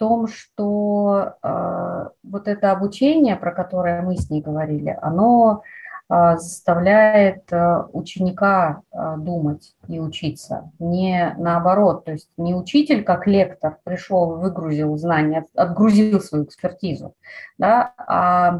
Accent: native